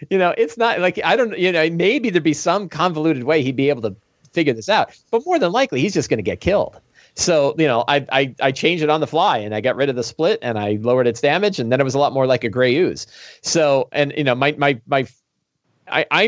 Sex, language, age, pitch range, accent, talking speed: male, English, 40-59, 115-150 Hz, American, 275 wpm